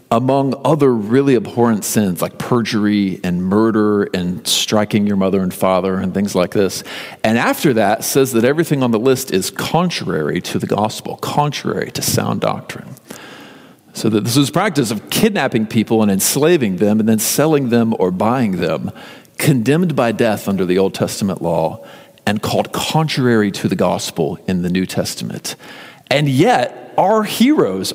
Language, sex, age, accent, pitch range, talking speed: English, male, 40-59, American, 105-145 Hz, 165 wpm